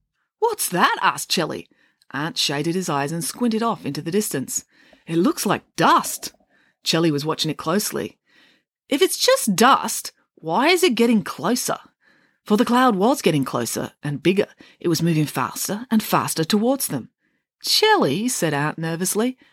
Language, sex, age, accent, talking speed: English, female, 30-49, Australian, 160 wpm